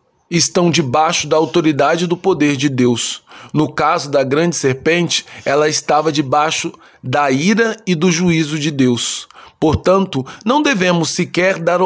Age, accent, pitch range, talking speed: 20-39, Brazilian, 140-170 Hz, 145 wpm